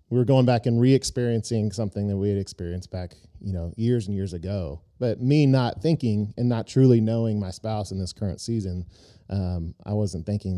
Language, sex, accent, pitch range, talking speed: English, male, American, 90-115 Hz, 205 wpm